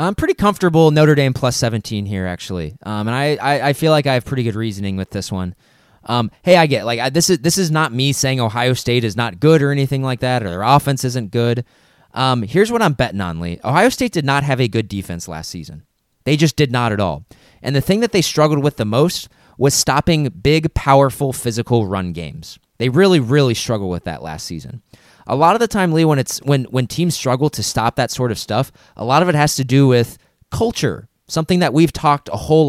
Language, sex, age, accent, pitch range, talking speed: English, male, 20-39, American, 115-155 Hz, 240 wpm